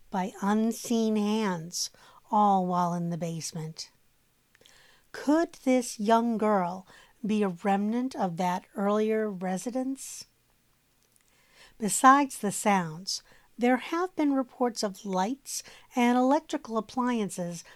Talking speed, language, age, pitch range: 105 wpm, English, 50-69, 185-245 Hz